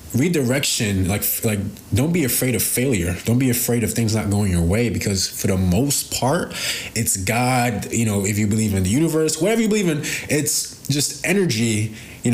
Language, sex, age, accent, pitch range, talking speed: English, male, 20-39, American, 100-140 Hz, 195 wpm